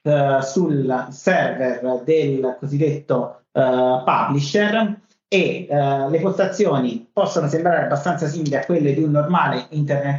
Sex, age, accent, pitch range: male, 40-59, native, 135-175 Hz